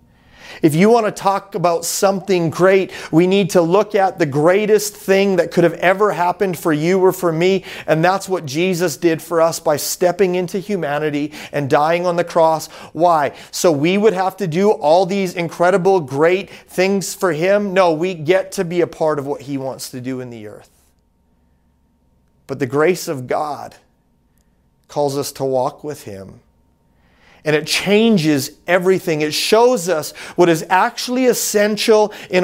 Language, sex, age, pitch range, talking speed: English, male, 30-49, 130-190 Hz, 175 wpm